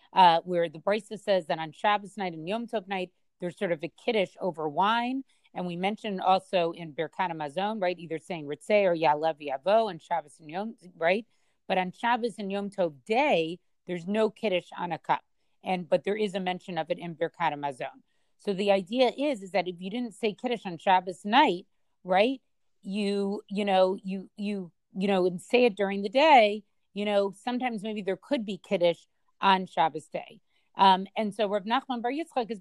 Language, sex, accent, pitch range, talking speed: English, female, American, 170-210 Hz, 205 wpm